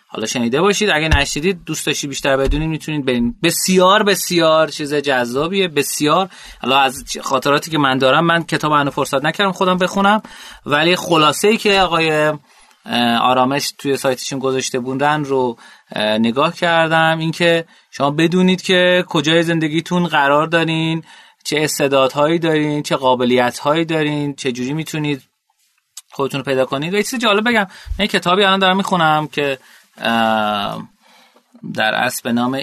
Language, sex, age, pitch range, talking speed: Persian, male, 30-49, 125-170 Hz, 140 wpm